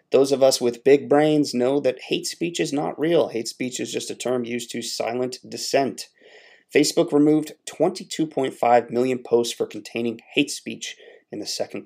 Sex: male